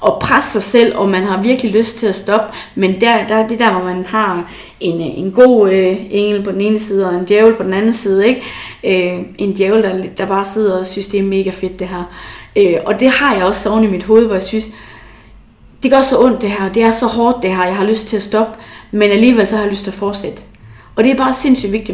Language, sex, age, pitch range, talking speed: Danish, female, 30-49, 185-220 Hz, 270 wpm